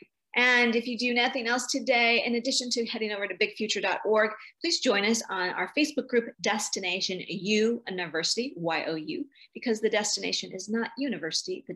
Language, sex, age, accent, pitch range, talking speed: English, female, 40-59, American, 180-235 Hz, 165 wpm